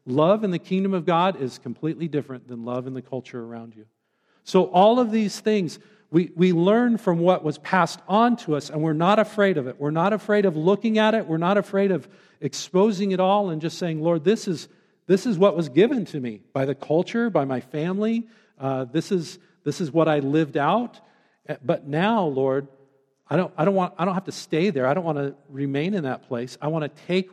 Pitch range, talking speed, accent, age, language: 130-180 Hz, 230 wpm, American, 50-69, English